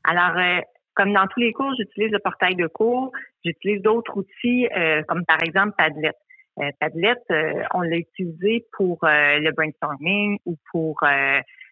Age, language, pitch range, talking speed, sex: 40-59, French, 170-220 Hz, 170 wpm, female